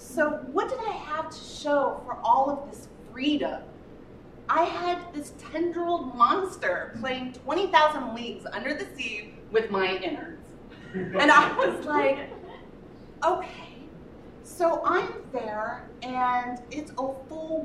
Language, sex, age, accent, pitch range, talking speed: English, female, 30-49, American, 235-320 Hz, 135 wpm